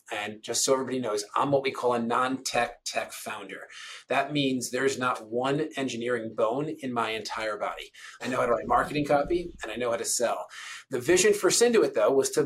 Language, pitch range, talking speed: English, 125-170 Hz, 215 wpm